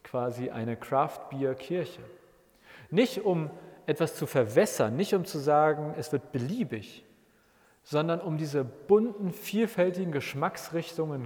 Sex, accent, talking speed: male, German, 125 wpm